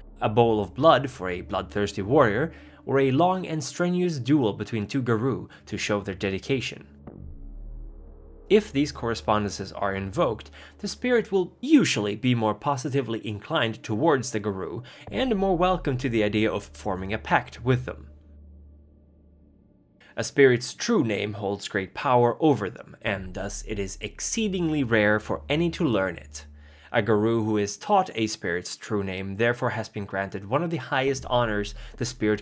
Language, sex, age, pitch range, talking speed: English, male, 20-39, 100-140 Hz, 165 wpm